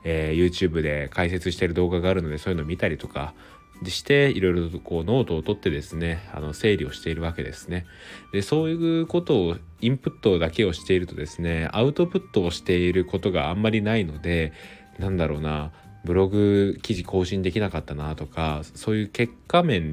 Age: 20-39